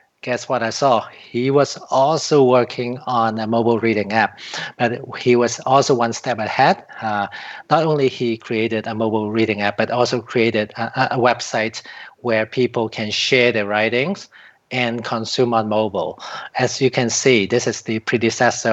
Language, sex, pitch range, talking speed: English, male, 110-125 Hz, 170 wpm